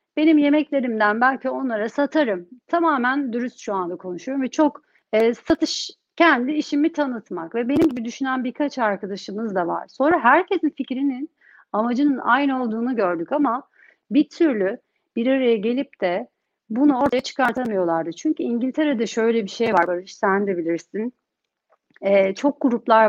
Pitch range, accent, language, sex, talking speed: 215-275 Hz, native, Turkish, female, 145 wpm